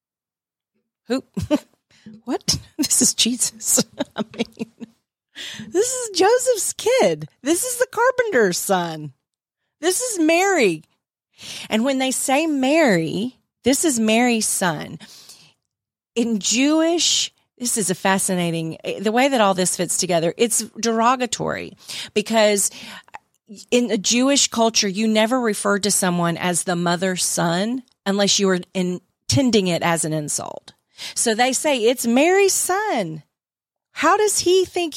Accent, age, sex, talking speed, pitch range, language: American, 40-59, female, 130 wpm, 195-280 Hz, English